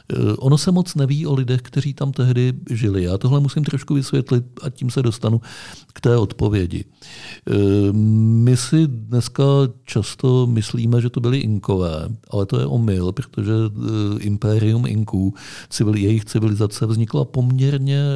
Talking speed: 140 wpm